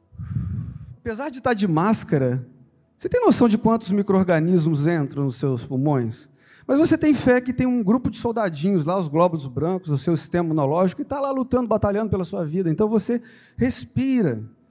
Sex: male